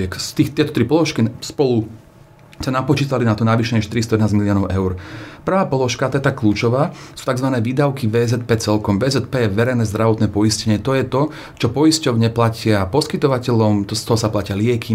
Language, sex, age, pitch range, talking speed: Slovak, male, 40-59, 110-130 Hz, 170 wpm